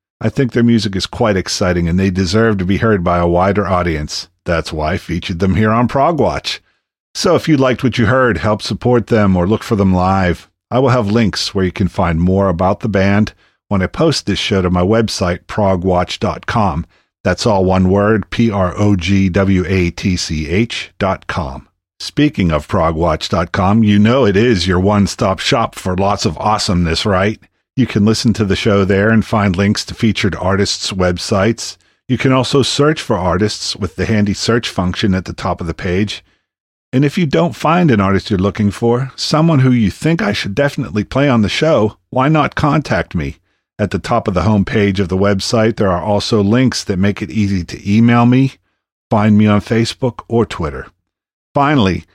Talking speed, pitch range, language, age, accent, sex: 190 wpm, 95-115 Hz, English, 50-69, American, male